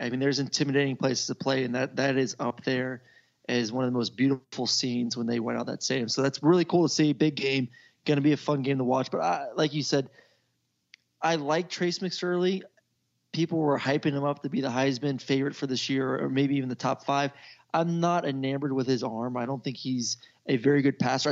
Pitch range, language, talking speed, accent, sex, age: 130-150 Hz, English, 235 wpm, American, male, 20-39